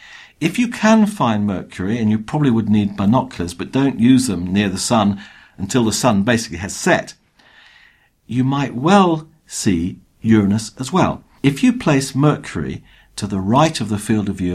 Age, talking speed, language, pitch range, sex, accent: 50-69, 175 wpm, English, 95-135 Hz, male, British